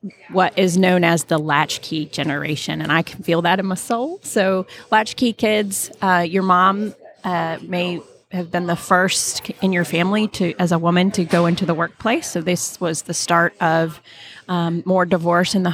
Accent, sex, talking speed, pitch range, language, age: American, female, 190 wpm, 165-195 Hz, English, 30-49